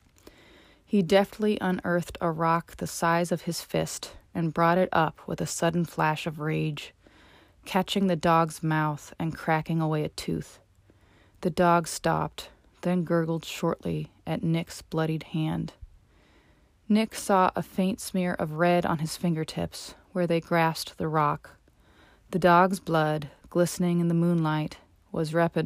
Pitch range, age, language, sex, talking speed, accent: 105-175 Hz, 30-49, English, female, 145 wpm, American